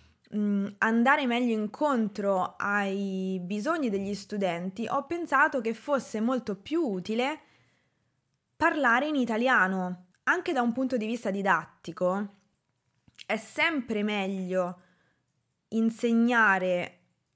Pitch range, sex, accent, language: 190-255 Hz, female, native, Italian